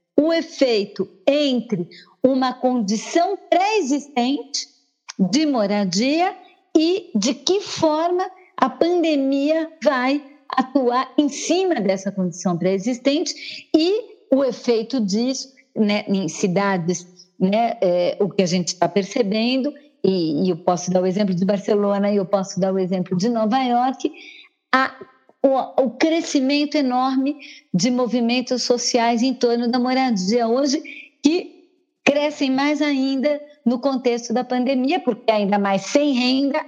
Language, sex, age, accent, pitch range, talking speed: Portuguese, female, 50-69, Brazilian, 210-290 Hz, 130 wpm